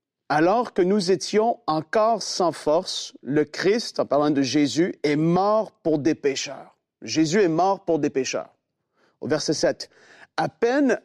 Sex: male